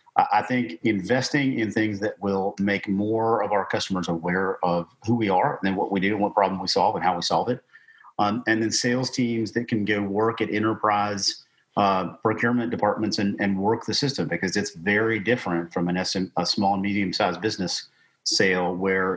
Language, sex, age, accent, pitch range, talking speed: English, male, 40-59, American, 95-110 Hz, 205 wpm